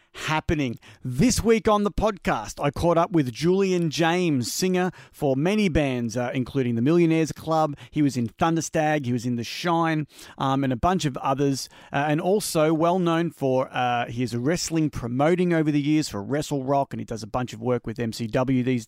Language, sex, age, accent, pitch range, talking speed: English, male, 30-49, Australian, 130-170 Hz, 200 wpm